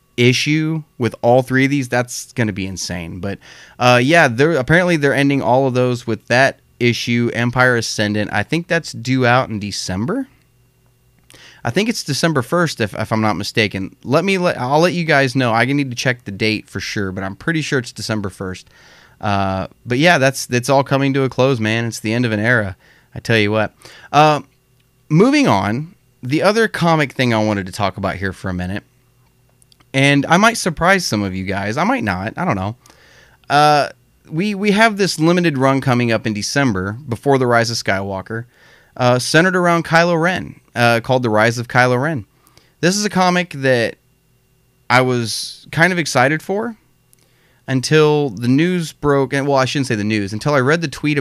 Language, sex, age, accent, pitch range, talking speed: English, male, 30-49, American, 110-145 Hz, 200 wpm